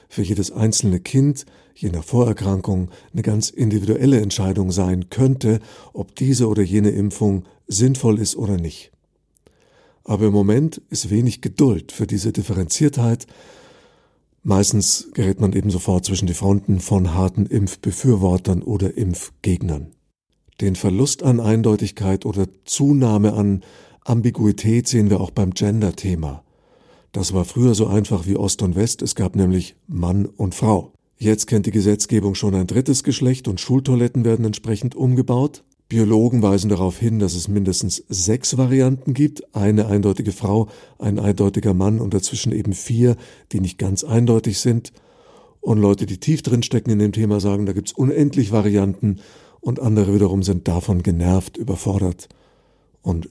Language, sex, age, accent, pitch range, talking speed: German, male, 50-69, German, 95-115 Hz, 145 wpm